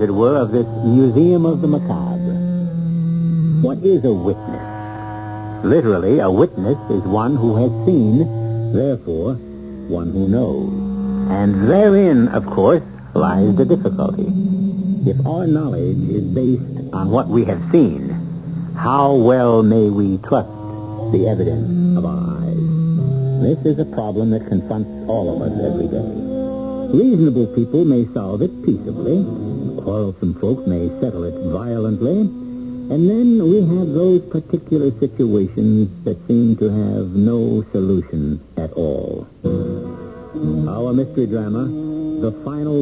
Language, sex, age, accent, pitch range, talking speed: English, male, 70-89, American, 100-155 Hz, 130 wpm